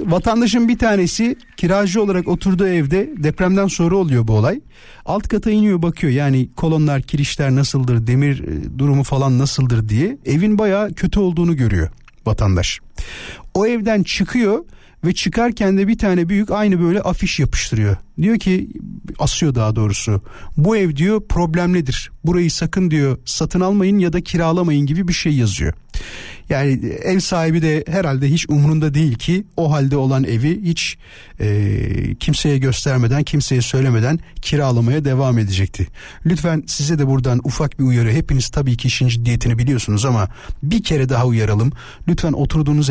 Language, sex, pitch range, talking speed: Turkish, male, 125-180 Hz, 150 wpm